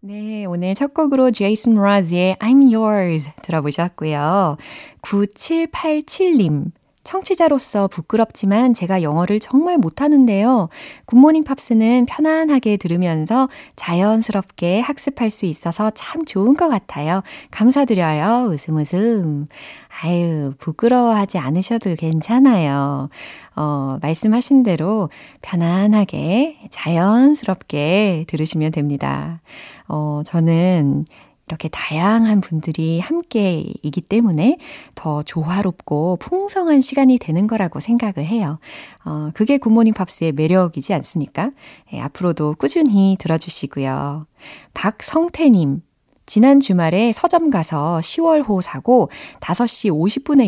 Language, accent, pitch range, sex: Korean, native, 160-245 Hz, female